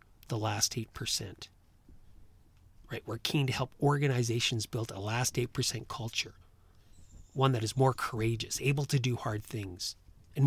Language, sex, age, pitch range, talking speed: English, male, 40-59, 100-135 Hz, 155 wpm